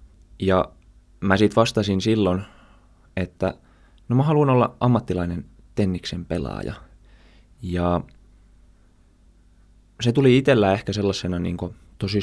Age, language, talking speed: 20-39, Finnish, 105 wpm